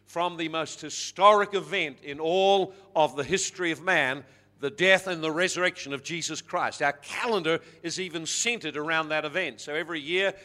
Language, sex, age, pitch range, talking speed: English, male, 50-69, 160-200 Hz, 180 wpm